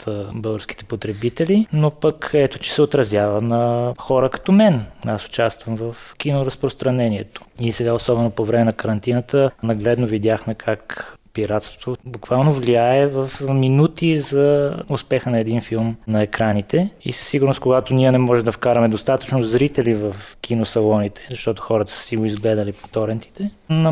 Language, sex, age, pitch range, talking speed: Bulgarian, male, 20-39, 110-135 Hz, 150 wpm